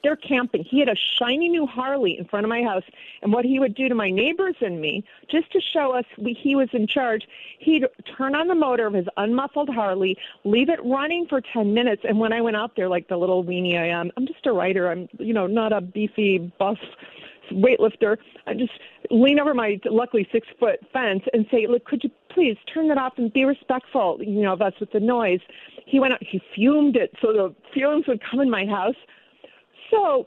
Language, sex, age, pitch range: English, female, 50-69, 200-270 Hz